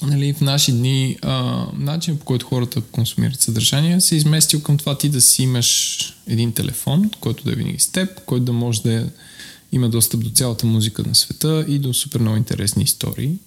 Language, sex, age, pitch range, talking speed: Bulgarian, male, 20-39, 105-145 Hz, 200 wpm